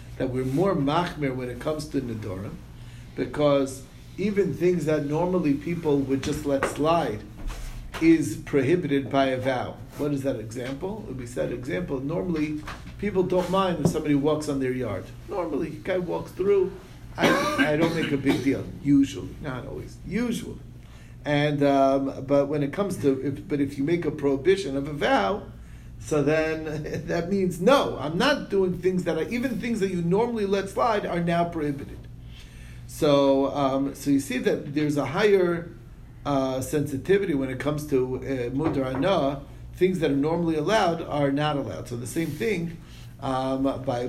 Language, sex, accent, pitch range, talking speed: English, male, American, 120-160 Hz, 175 wpm